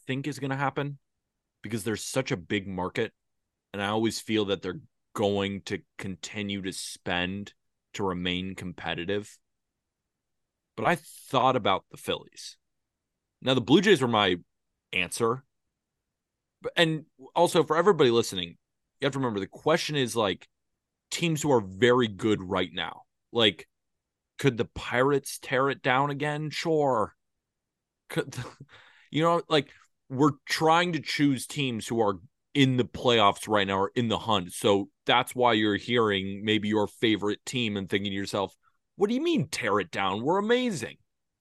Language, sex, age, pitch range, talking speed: English, male, 20-39, 100-135 Hz, 160 wpm